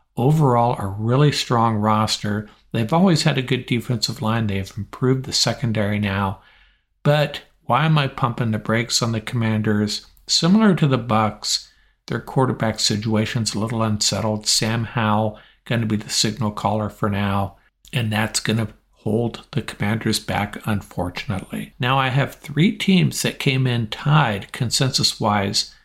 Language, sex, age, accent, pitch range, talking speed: English, male, 60-79, American, 110-140 Hz, 155 wpm